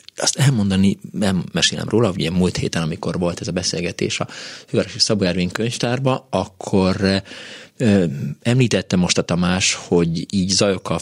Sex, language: male, Hungarian